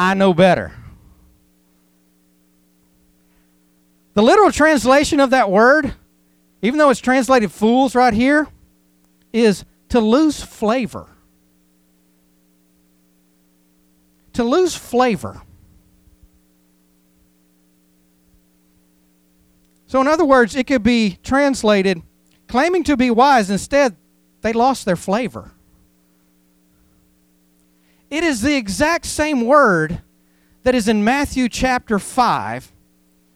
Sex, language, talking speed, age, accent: male, English, 95 wpm, 50-69, American